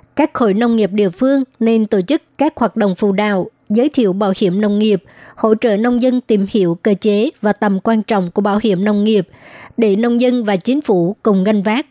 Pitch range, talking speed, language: 205-235 Hz, 230 wpm, Vietnamese